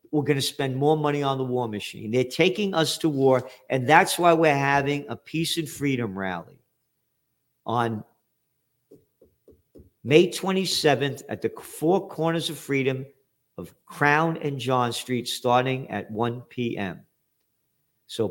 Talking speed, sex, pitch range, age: 145 wpm, male, 135-175 Hz, 50-69